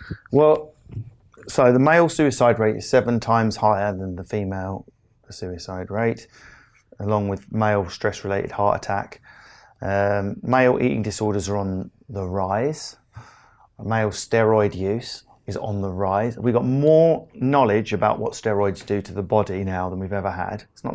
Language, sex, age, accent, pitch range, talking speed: English, male, 30-49, British, 95-120 Hz, 155 wpm